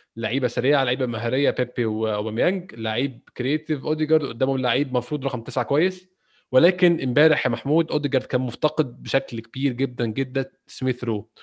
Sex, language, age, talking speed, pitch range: male, Arabic, 20-39, 140 wpm, 120-155 Hz